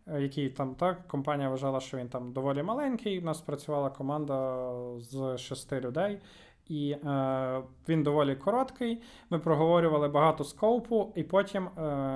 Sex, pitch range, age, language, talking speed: male, 130-160 Hz, 20-39, Ukrainian, 145 wpm